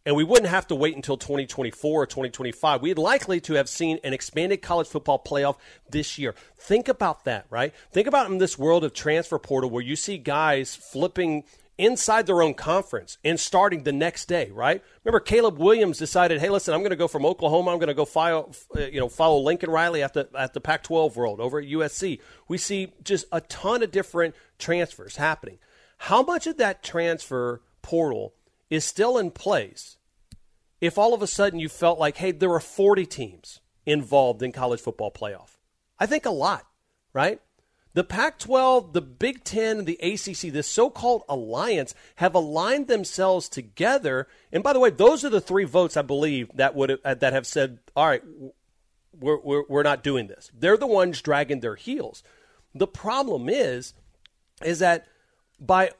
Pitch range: 140-190 Hz